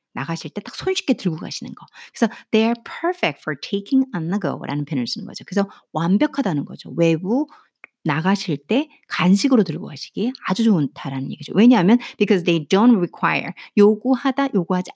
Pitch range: 170-255 Hz